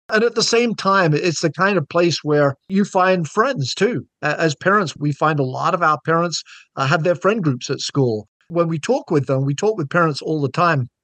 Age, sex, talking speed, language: 50-69, male, 235 wpm, English